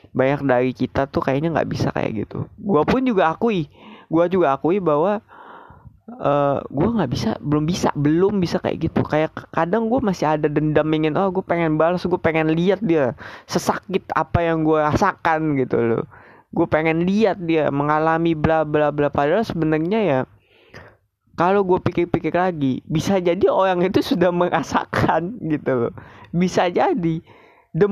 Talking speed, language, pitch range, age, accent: 160 wpm, Indonesian, 135-200 Hz, 20-39, native